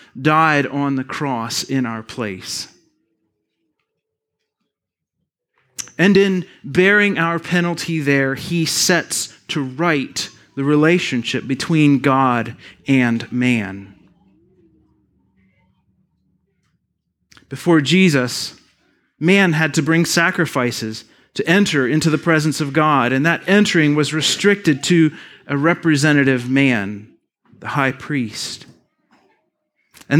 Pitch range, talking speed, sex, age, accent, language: 125-165 Hz, 100 wpm, male, 30-49, American, English